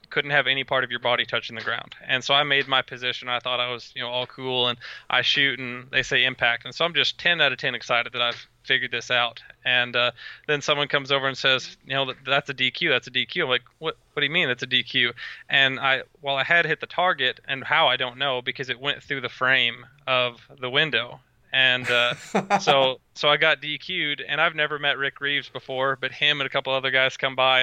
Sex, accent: male, American